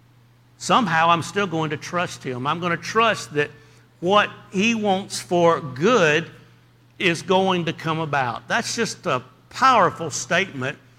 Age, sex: 60-79, male